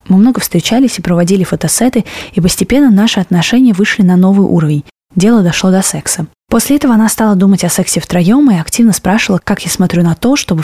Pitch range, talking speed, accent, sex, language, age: 170-205 Hz, 195 wpm, native, female, Russian, 20-39